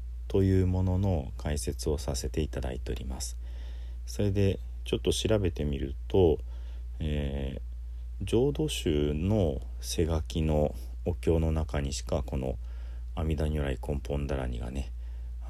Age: 40-59